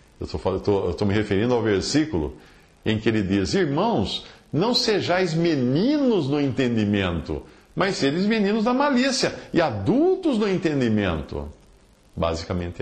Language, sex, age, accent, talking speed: Portuguese, male, 50-69, Brazilian, 130 wpm